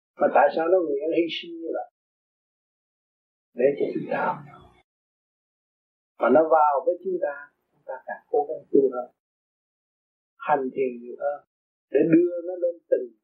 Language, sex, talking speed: Vietnamese, male, 135 wpm